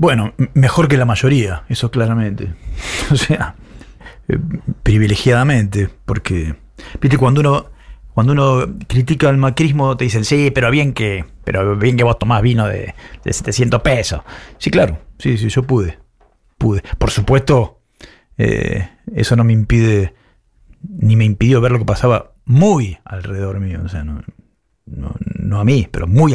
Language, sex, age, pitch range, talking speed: Spanish, male, 40-59, 105-140 Hz, 155 wpm